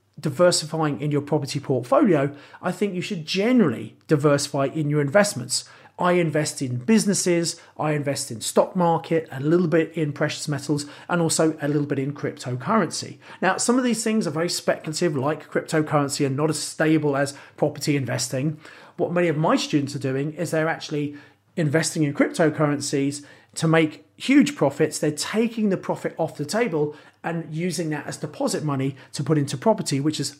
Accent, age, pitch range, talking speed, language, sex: British, 40-59, 140-175 Hz, 175 wpm, English, male